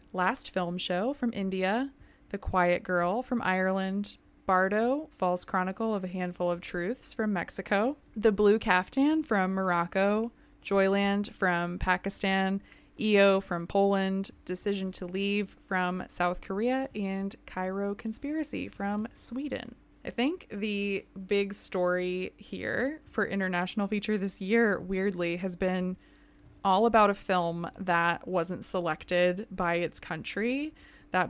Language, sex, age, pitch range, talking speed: English, female, 20-39, 180-210 Hz, 130 wpm